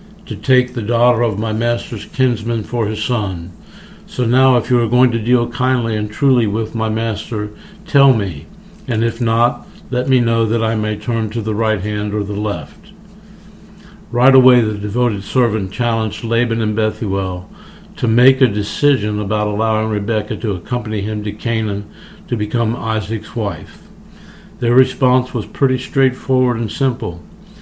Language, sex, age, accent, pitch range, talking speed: English, male, 60-79, American, 105-125 Hz, 165 wpm